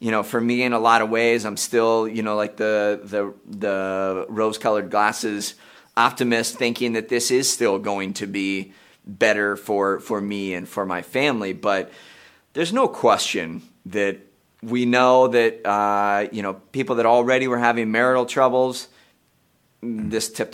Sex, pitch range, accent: male, 105-130 Hz, American